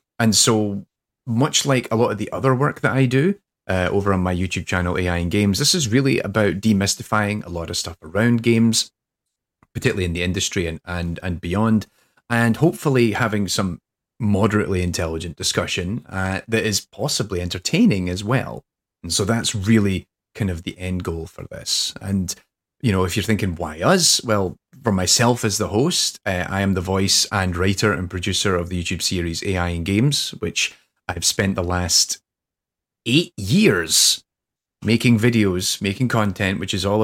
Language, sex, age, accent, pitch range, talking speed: English, male, 30-49, British, 90-110 Hz, 180 wpm